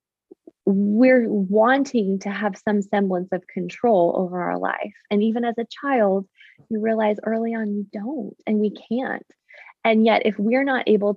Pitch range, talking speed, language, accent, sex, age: 195-230 Hz, 165 wpm, English, American, female, 20-39